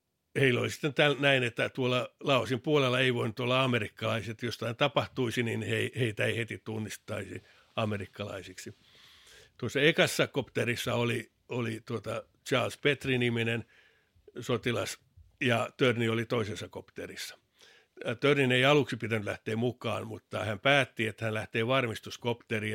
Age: 60-79